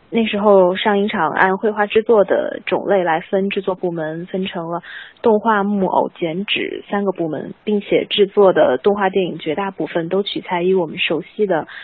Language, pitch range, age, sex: Chinese, 180-210 Hz, 20-39, female